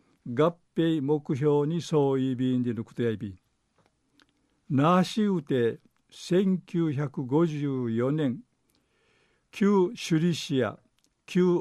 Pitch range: 135-170 Hz